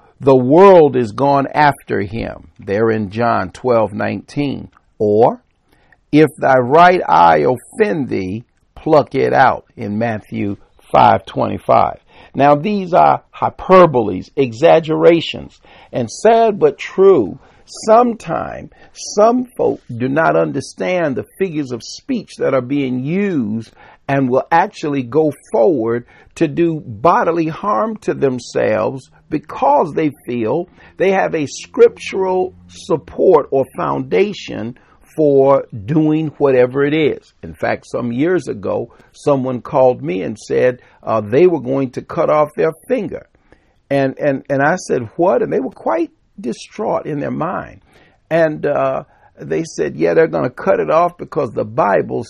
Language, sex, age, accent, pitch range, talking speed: English, male, 50-69, American, 125-180 Hz, 140 wpm